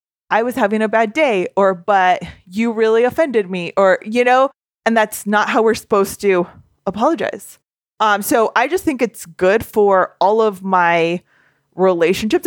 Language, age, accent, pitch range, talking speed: English, 20-39, American, 190-255 Hz, 170 wpm